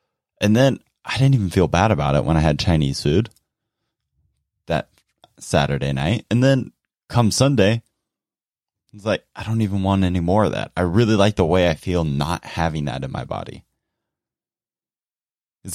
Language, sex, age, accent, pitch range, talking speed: English, male, 20-39, American, 85-120 Hz, 170 wpm